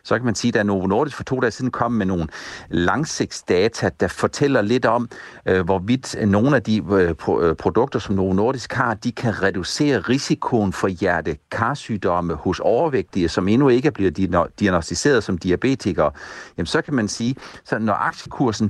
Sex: male